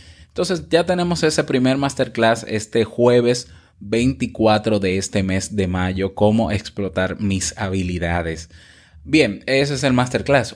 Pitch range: 95-130 Hz